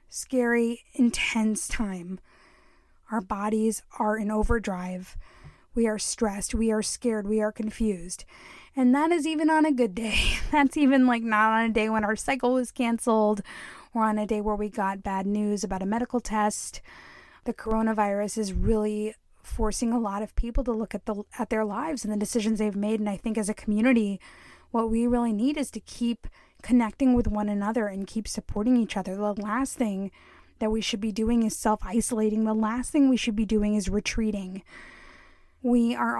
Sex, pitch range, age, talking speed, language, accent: female, 210-245 Hz, 10-29, 185 wpm, English, American